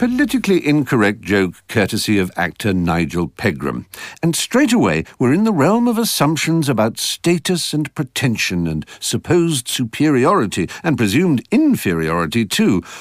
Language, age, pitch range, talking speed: English, 60-79, 95-155 Hz, 130 wpm